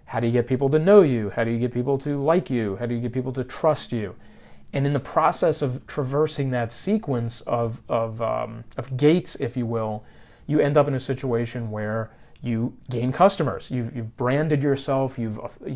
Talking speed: 210 wpm